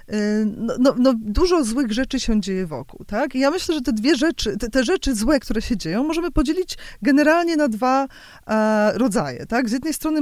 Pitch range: 195-265 Hz